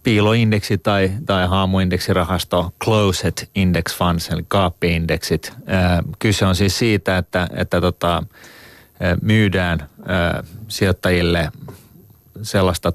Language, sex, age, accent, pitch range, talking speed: Finnish, male, 30-49, native, 85-105 Hz, 95 wpm